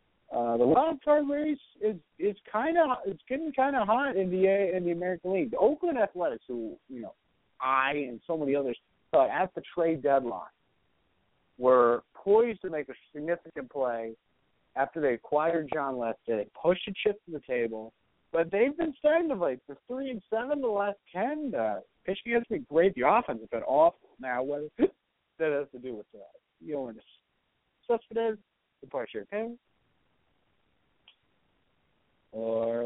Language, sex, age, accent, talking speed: English, male, 50-69, American, 180 wpm